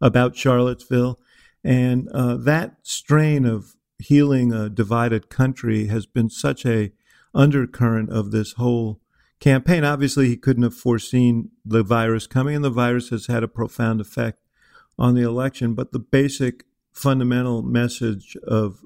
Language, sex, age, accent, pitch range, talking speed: English, male, 50-69, American, 110-125 Hz, 145 wpm